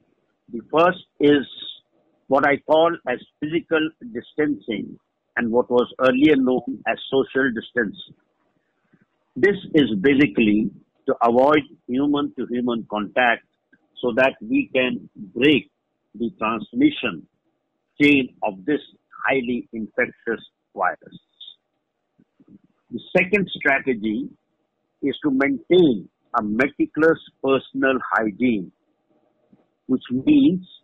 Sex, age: male, 60-79